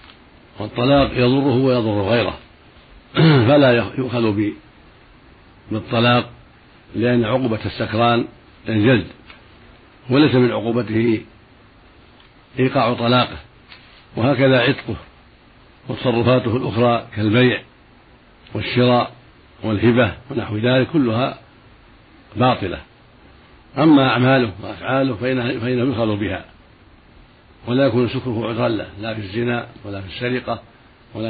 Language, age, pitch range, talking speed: Arabic, 60-79, 110-125 Hz, 85 wpm